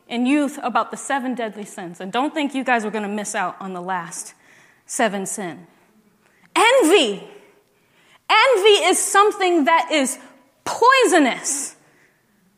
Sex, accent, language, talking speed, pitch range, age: female, American, English, 140 wpm, 210-330 Hz, 20-39